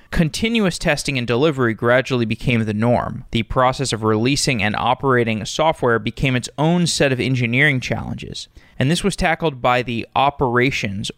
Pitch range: 115-145 Hz